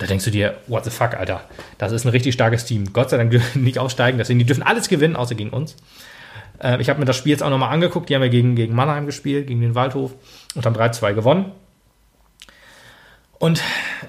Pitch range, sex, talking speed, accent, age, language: 115-140 Hz, male, 235 wpm, German, 30-49, German